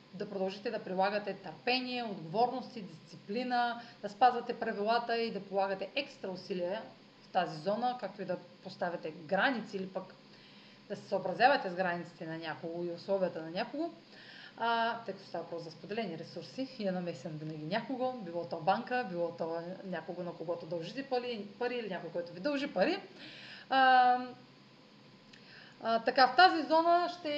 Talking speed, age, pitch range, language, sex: 160 wpm, 30-49, 185-240 Hz, Bulgarian, female